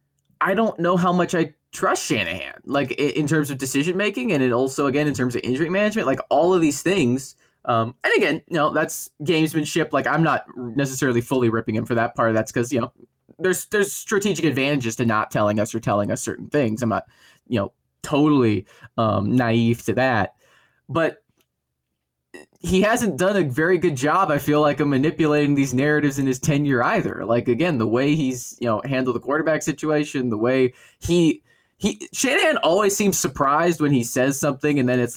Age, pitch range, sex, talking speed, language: 20-39, 120-160 Hz, male, 200 wpm, English